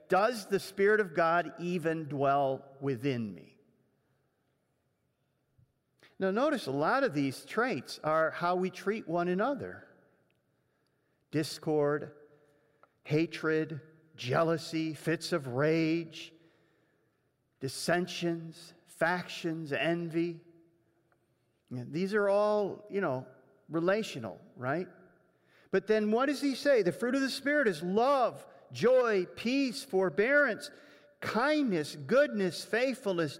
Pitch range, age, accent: 160-220 Hz, 50-69, American